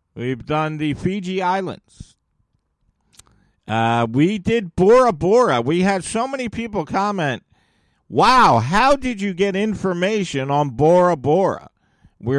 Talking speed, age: 125 wpm, 50-69